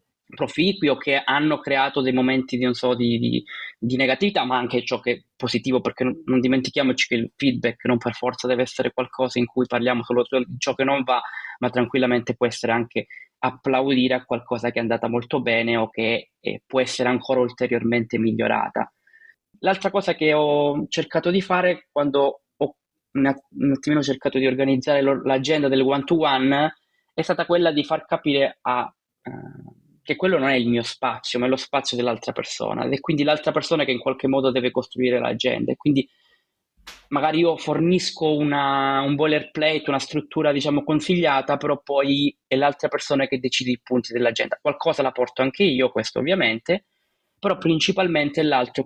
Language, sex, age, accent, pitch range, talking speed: Italian, male, 20-39, native, 125-150 Hz, 180 wpm